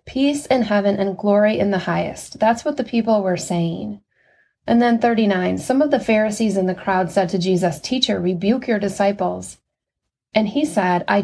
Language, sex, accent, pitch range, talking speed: English, female, American, 190-230 Hz, 185 wpm